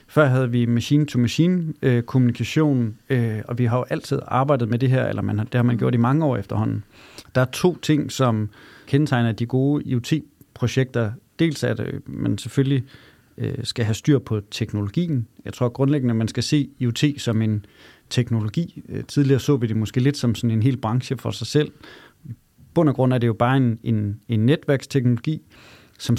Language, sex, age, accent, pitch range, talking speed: Danish, male, 30-49, native, 115-140 Hz, 190 wpm